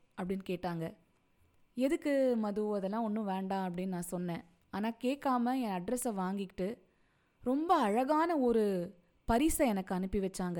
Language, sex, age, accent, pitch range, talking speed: Tamil, female, 20-39, native, 195-260 Hz, 125 wpm